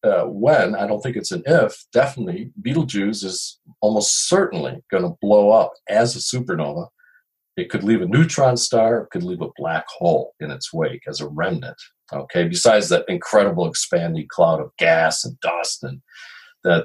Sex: male